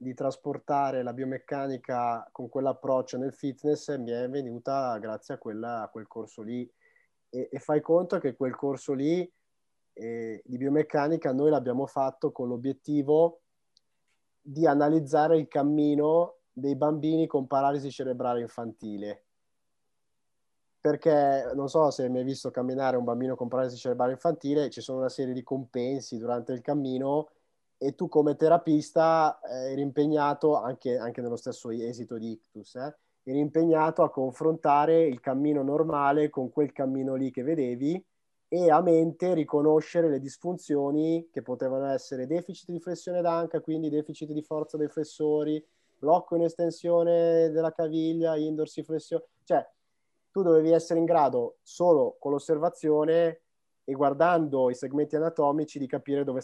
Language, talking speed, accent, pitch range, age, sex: Italian, 145 wpm, native, 130-160 Hz, 30-49, male